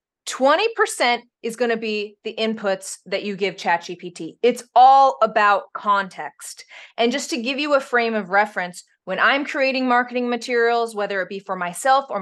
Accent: American